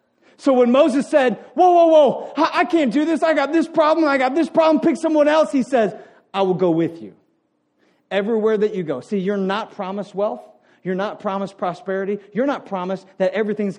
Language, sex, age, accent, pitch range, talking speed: English, male, 40-59, American, 265-335 Hz, 205 wpm